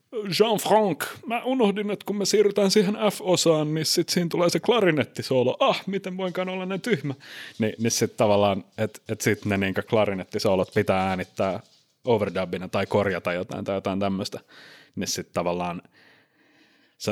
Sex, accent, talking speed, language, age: male, native, 150 wpm, Finnish, 30-49